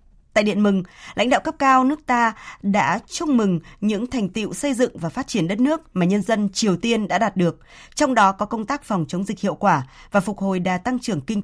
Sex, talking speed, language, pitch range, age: female, 245 wpm, Vietnamese, 180-245 Hz, 20-39